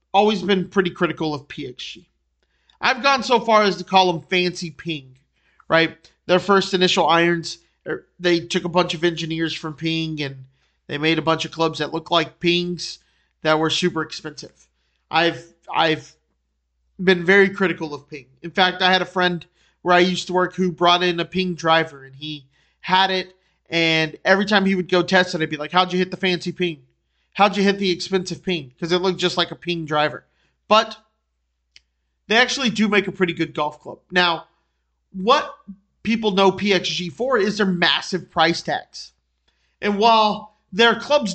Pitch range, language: 160-200 Hz, English